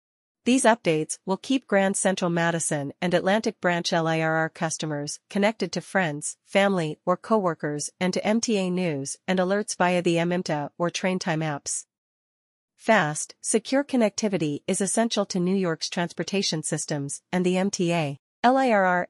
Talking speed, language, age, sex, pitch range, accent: 140 wpm, English, 40-59, female, 165-195 Hz, American